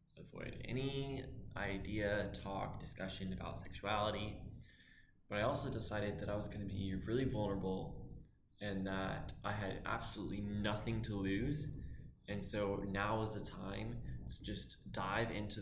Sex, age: male, 10-29